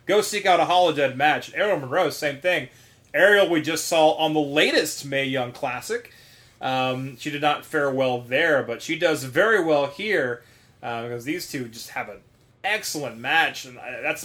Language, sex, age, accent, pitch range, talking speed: English, male, 30-49, American, 130-185 Hz, 185 wpm